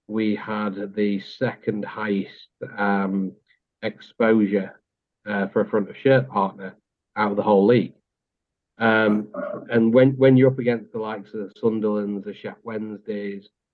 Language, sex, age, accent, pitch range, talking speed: English, male, 40-59, British, 100-110 Hz, 135 wpm